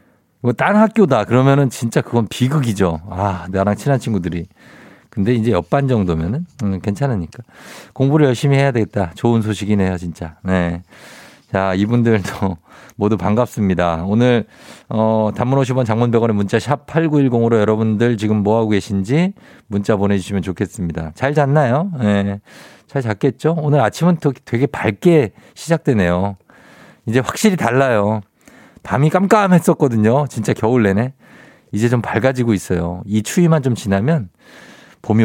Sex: male